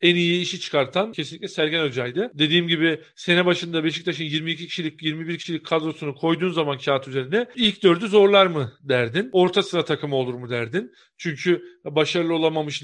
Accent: native